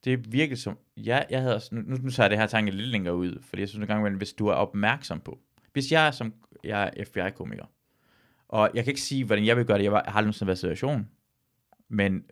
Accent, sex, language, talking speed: native, male, Danish, 240 wpm